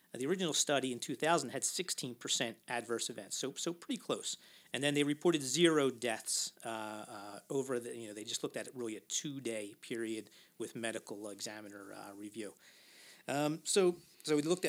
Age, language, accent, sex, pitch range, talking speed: 40-59, English, American, male, 125-170 Hz, 180 wpm